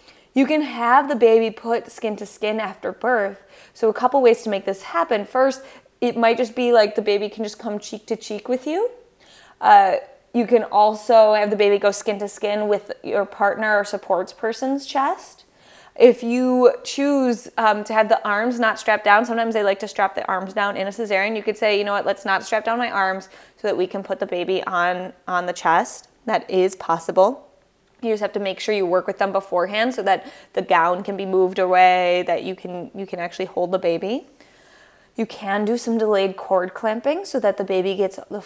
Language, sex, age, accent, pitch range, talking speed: English, female, 20-39, American, 195-230 Hz, 220 wpm